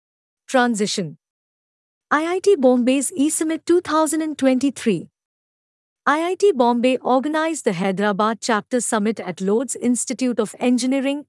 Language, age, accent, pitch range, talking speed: Hindi, 50-69, native, 220-280 Hz, 95 wpm